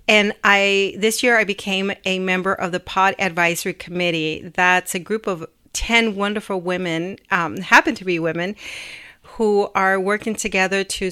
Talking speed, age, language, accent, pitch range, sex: 160 wpm, 40-59, English, American, 175-200 Hz, female